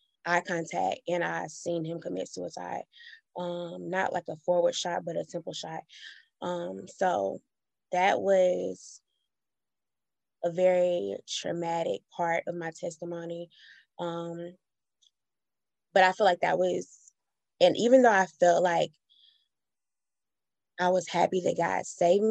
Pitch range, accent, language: 170-185 Hz, American, English